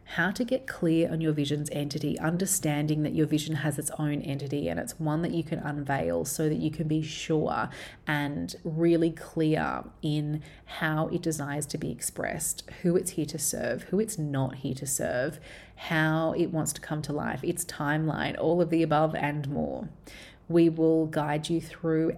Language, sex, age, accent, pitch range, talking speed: English, female, 30-49, Australian, 150-170 Hz, 190 wpm